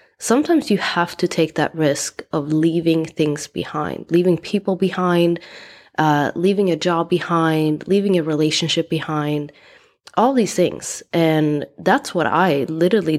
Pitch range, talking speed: 155-185 Hz, 140 wpm